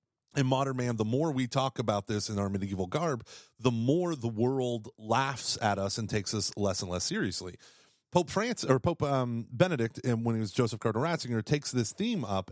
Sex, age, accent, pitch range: male, 30-49, American, 115-155 Hz